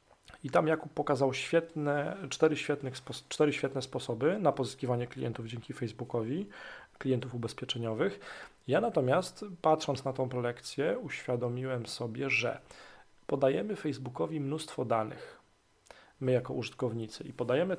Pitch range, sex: 120-150 Hz, male